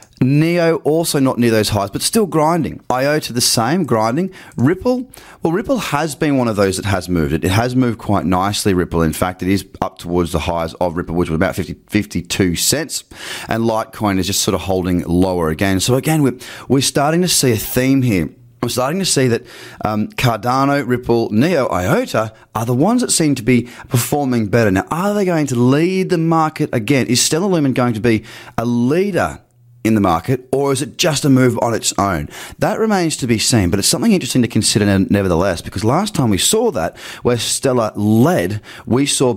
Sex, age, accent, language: male, 30-49, Australian, English